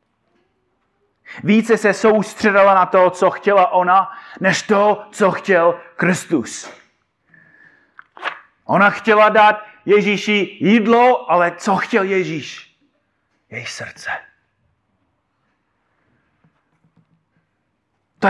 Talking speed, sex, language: 80 wpm, male, Czech